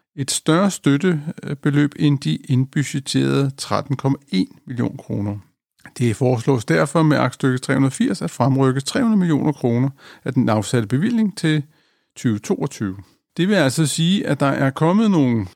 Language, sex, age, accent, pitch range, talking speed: Danish, male, 50-69, native, 125-160 Hz, 135 wpm